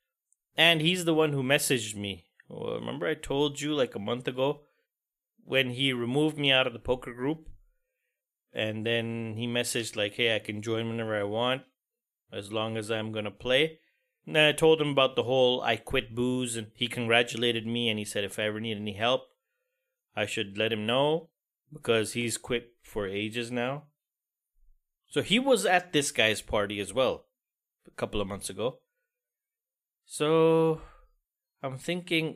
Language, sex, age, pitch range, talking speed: English, male, 30-49, 115-160 Hz, 180 wpm